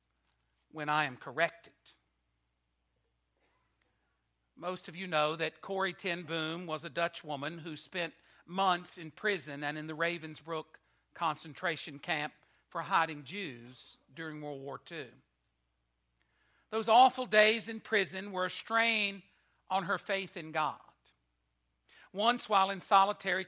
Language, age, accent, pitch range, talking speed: English, 60-79, American, 125-195 Hz, 130 wpm